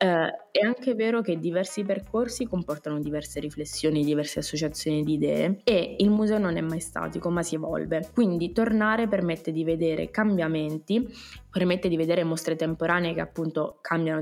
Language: Italian